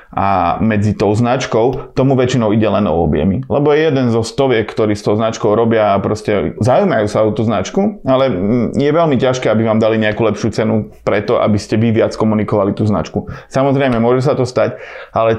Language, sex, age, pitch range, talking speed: Slovak, male, 30-49, 110-135 Hz, 200 wpm